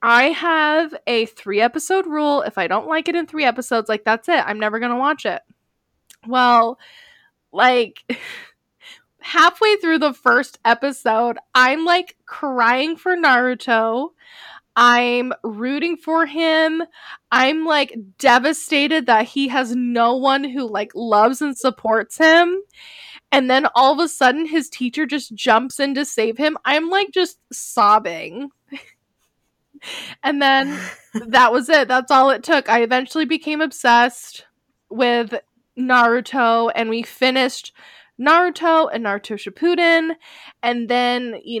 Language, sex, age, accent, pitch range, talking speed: English, female, 10-29, American, 230-310 Hz, 135 wpm